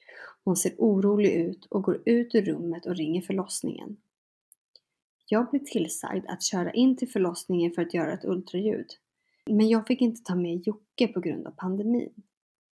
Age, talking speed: 30-49, 170 wpm